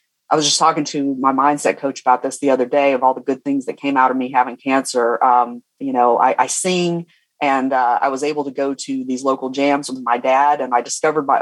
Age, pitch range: 30-49, 135-170 Hz